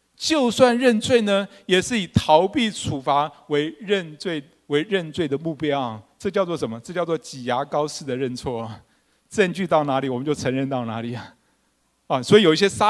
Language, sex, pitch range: Chinese, male, 140-210 Hz